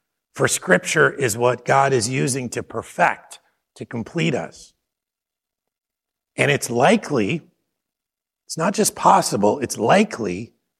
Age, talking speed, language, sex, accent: 50-69, 115 wpm, English, male, American